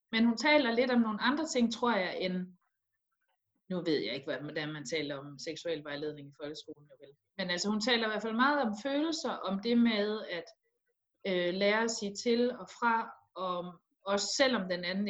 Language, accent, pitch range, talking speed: Danish, native, 170-220 Hz, 195 wpm